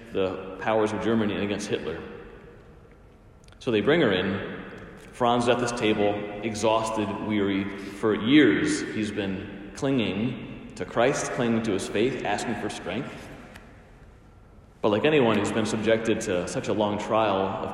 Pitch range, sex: 100-115 Hz, male